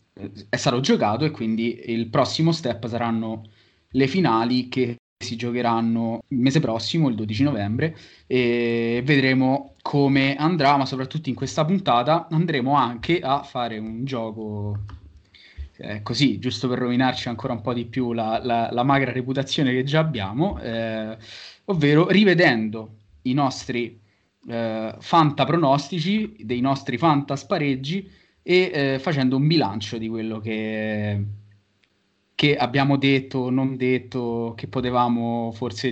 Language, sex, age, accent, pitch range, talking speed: Italian, male, 20-39, native, 115-140 Hz, 130 wpm